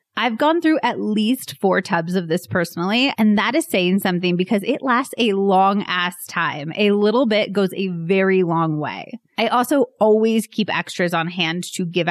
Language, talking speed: English, 190 wpm